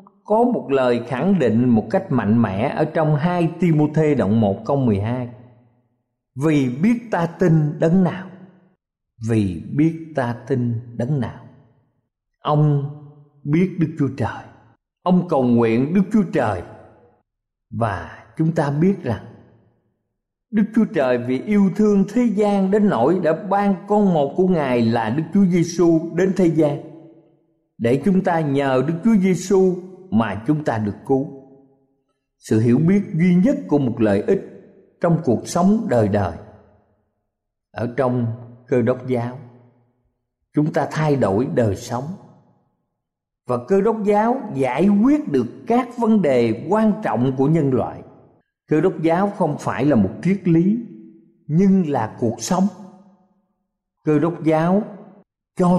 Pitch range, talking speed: 120-190 Hz, 150 wpm